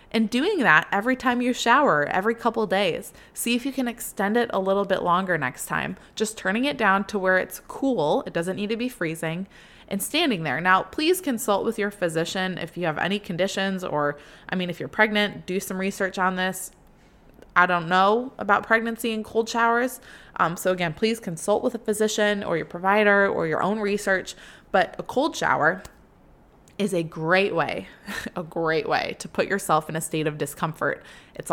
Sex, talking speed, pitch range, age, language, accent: female, 200 wpm, 180-230 Hz, 20-39, English, American